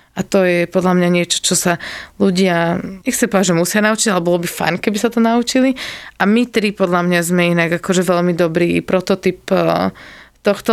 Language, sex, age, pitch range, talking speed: Slovak, female, 20-39, 180-215 Hz, 195 wpm